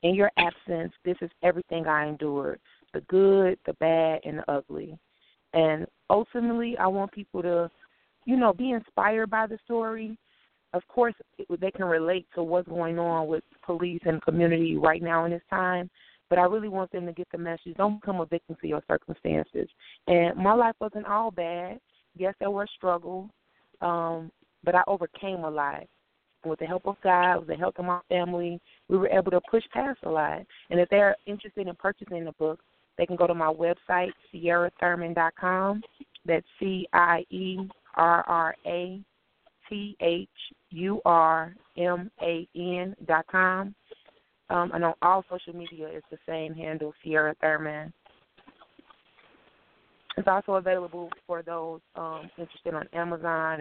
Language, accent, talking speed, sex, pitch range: English, American, 150 wpm, female, 165-195 Hz